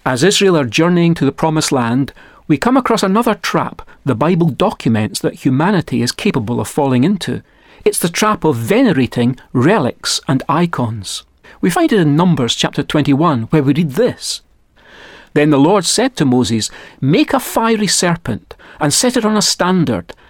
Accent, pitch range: British, 130-180 Hz